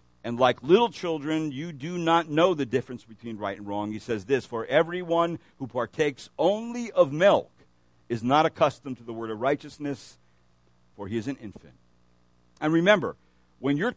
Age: 60-79